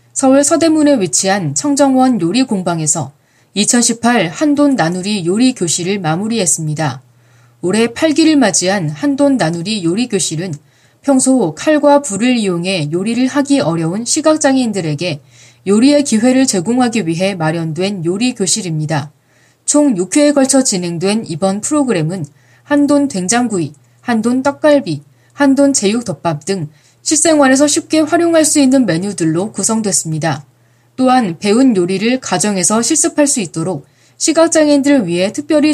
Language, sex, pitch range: Korean, female, 165-270 Hz